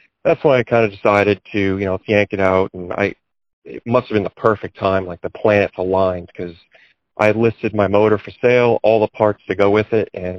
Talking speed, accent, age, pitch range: 235 wpm, American, 40-59, 95-110 Hz